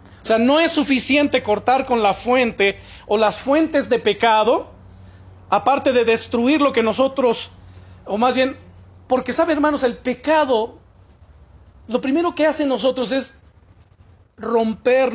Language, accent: Spanish, Mexican